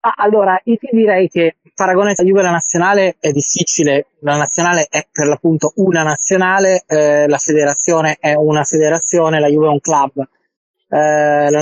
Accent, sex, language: native, male, Italian